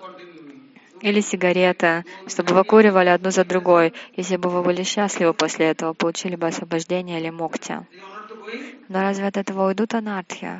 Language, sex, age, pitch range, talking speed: Russian, female, 20-39, 180-210 Hz, 140 wpm